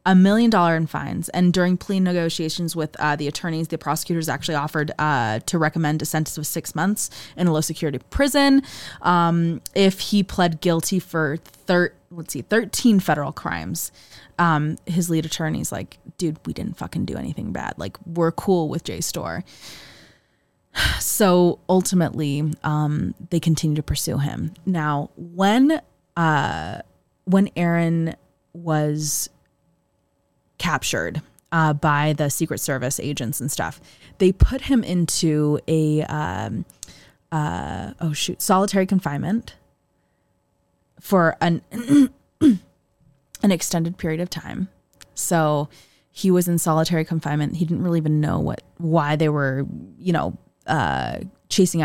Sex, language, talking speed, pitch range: female, English, 140 wpm, 150-180 Hz